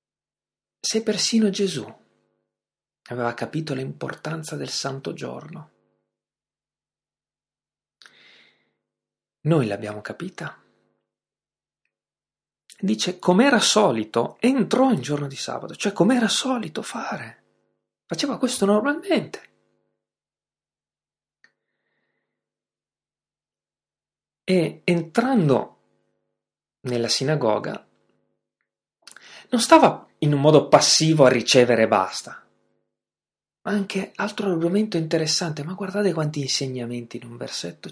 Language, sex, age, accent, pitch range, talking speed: Italian, male, 40-59, native, 120-200 Hz, 85 wpm